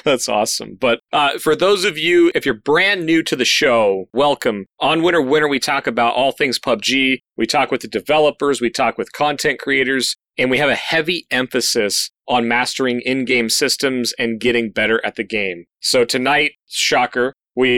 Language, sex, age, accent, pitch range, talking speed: English, male, 30-49, American, 115-145 Hz, 185 wpm